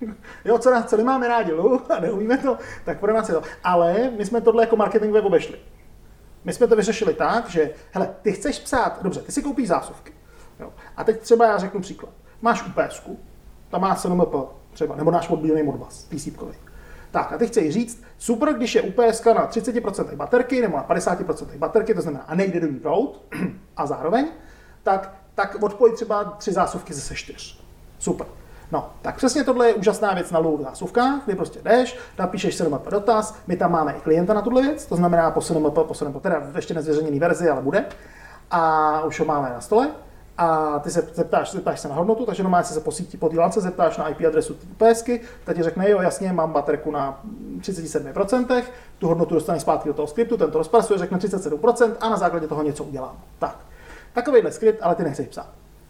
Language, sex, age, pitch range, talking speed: Czech, male, 40-59, 155-230 Hz, 195 wpm